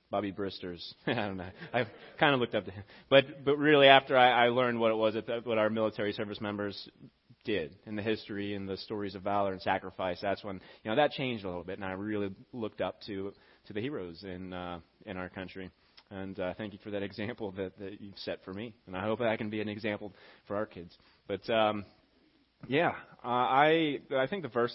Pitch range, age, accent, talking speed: 95-115 Hz, 30-49, American, 235 wpm